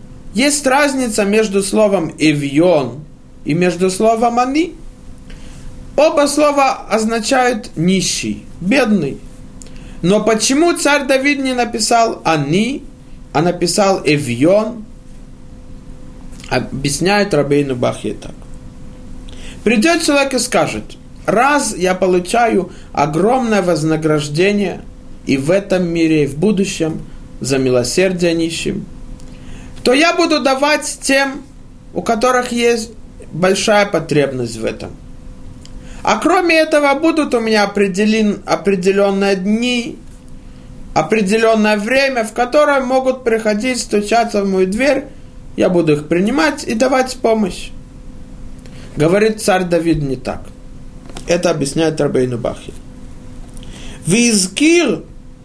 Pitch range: 165-255 Hz